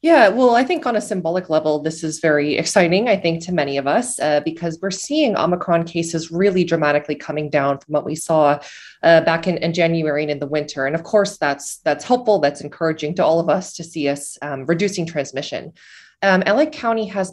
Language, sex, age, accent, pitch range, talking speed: English, female, 20-39, American, 150-190 Hz, 220 wpm